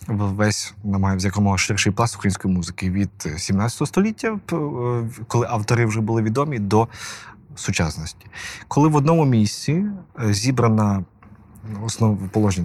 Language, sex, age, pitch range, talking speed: Ukrainian, male, 30-49, 100-130 Hz, 110 wpm